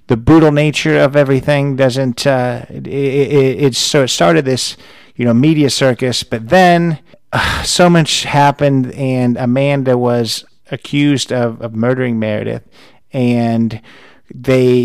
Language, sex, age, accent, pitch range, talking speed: English, male, 50-69, American, 120-145 Hz, 125 wpm